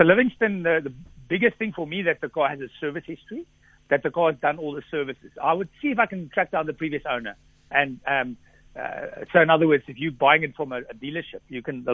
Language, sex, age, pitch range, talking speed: English, male, 60-79, 130-170 Hz, 255 wpm